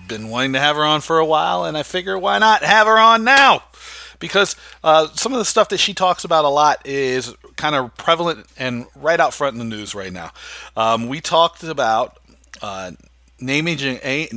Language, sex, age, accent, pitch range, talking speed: English, male, 40-59, American, 110-150 Hz, 200 wpm